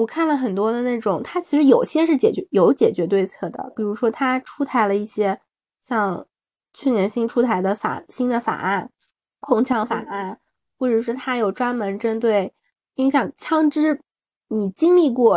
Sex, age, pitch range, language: female, 20-39, 205-255 Hz, Chinese